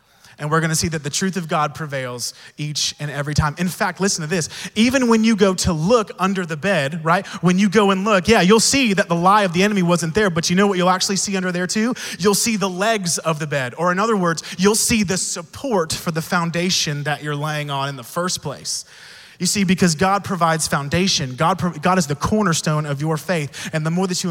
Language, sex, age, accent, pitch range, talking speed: English, male, 30-49, American, 160-205 Hz, 245 wpm